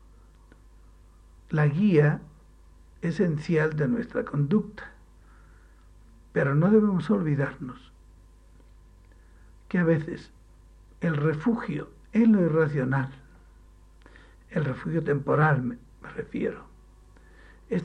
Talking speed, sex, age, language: 85 wpm, male, 60-79, Spanish